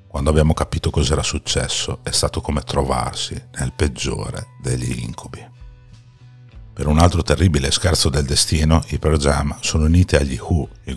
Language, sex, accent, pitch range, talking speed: Italian, male, native, 70-90 Hz, 150 wpm